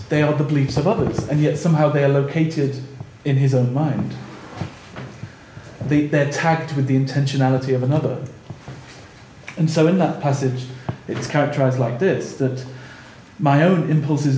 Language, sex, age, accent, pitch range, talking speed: English, male, 40-59, British, 130-160 Hz, 150 wpm